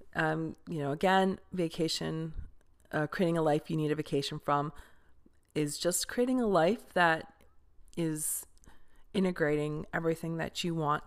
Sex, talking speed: female, 140 wpm